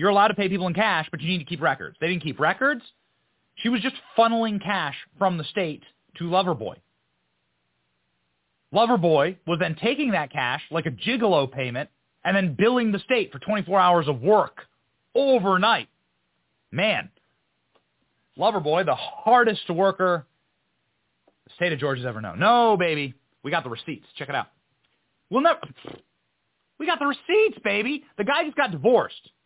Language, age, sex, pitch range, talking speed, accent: English, 30-49, male, 145-220 Hz, 165 wpm, American